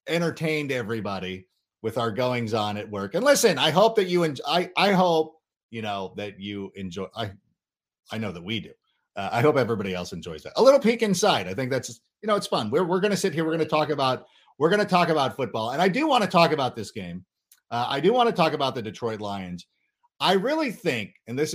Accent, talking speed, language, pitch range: American, 245 wpm, English, 110-160 Hz